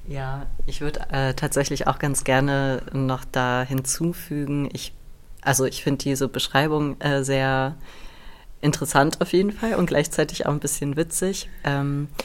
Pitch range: 125-140 Hz